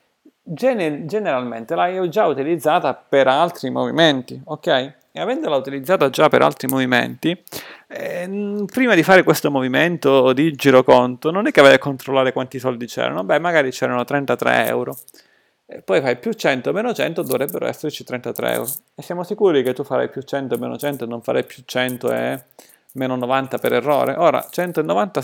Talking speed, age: 170 wpm, 30-49